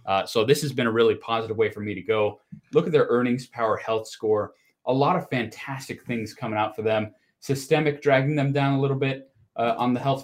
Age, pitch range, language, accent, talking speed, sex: 30-49, 110-130 Hz, English, American, 235 wpm, male